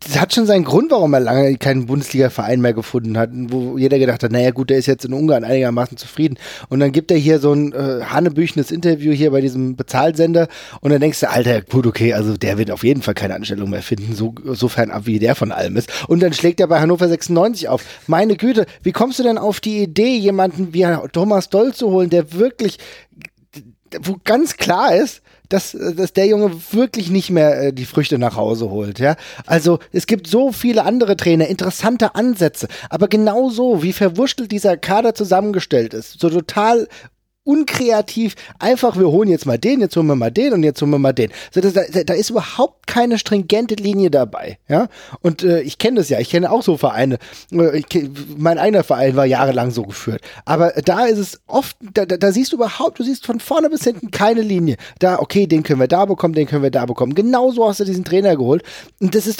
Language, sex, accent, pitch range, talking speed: German, male, German, 135-205 Hz, 220 wpm